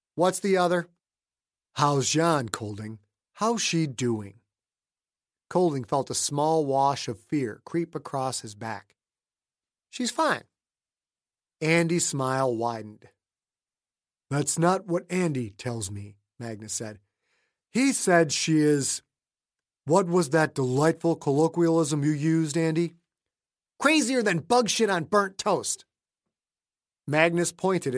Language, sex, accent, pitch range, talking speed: English, male, American, 120-170 Hz, 115 wpm